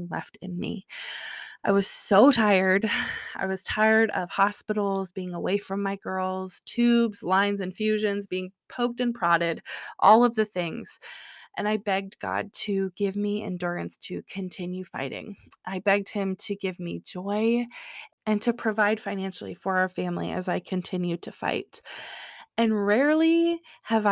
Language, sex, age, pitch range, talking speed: English, female, 20-39, 185-225 Hz, 150 wpm